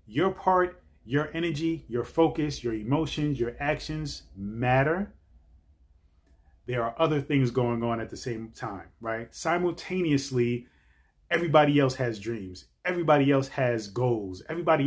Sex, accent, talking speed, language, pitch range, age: male, American, 130 wpm, English, 95-145 Hz, 30-49